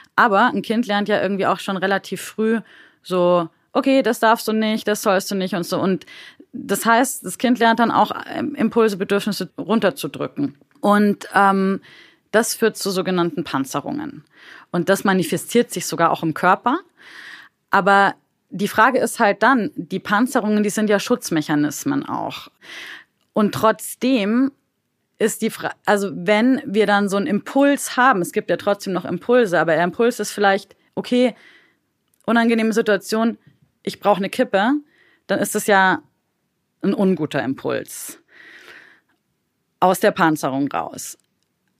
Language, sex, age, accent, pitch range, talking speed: German, female, 30-49, German, 185-230 Hz, 145 wpm